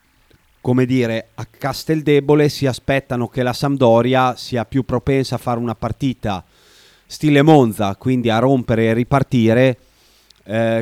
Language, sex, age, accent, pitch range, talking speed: Italian, male, 30-49, native, 110-130 Hz, 135 wpm